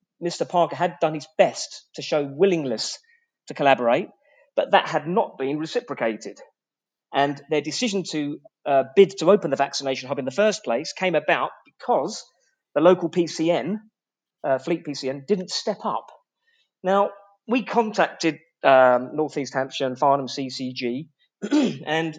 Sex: male